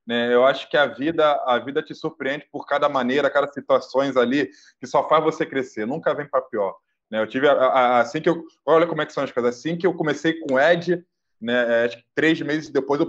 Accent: Brazilian